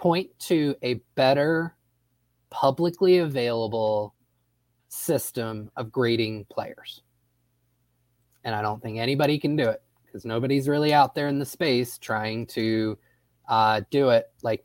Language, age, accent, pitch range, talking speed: English, 20-39, American, 110-125 Hz, 130 wpm